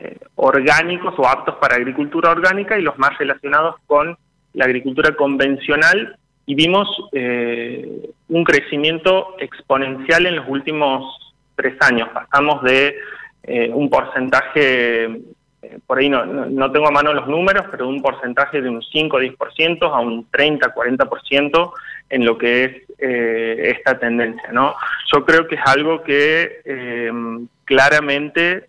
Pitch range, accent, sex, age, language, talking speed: 125-150 Hz, Argentinian, male, 30-49, Spanish, 145 wpm